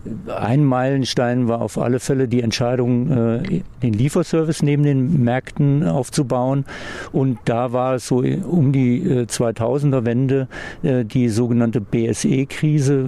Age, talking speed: 60-79, 115 wpm